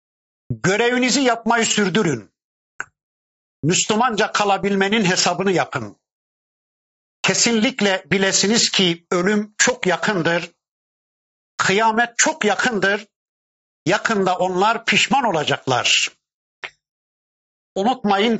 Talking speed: 70 wpm